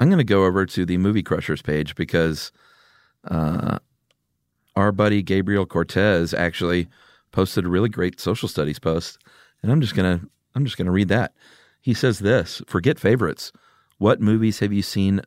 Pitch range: 90-110 Hz